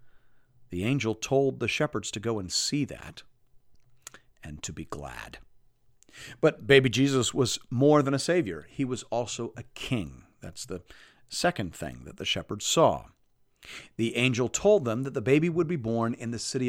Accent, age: American, 50-69